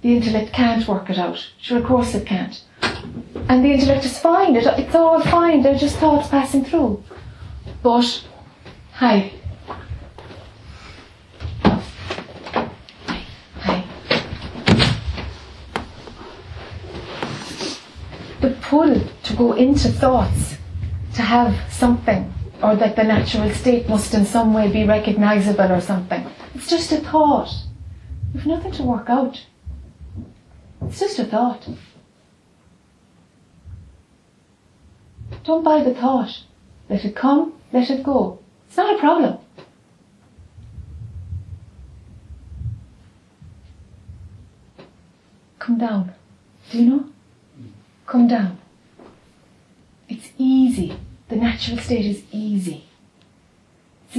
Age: 30-49